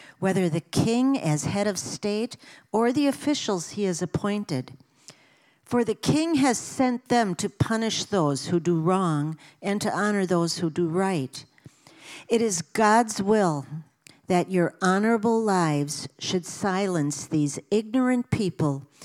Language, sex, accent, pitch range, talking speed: English, female, American, 155-215 Hz, 140 wpm